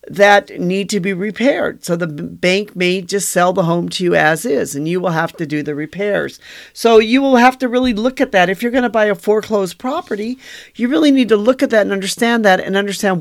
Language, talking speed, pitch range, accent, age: English, 245 wpm, 170-220 Hz, American, 40-59